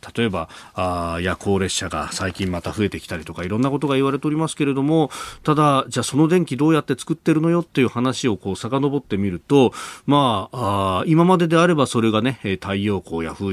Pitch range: 95-150 Hz